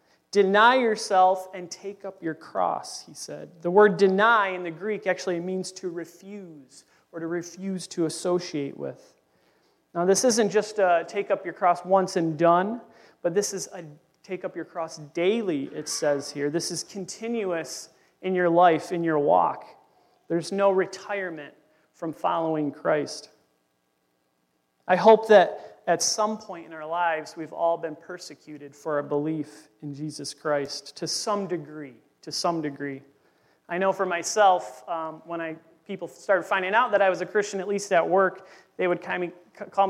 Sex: male